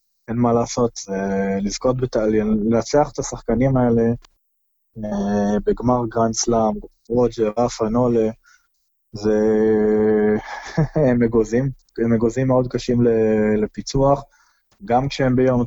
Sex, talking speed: male, 95 wpm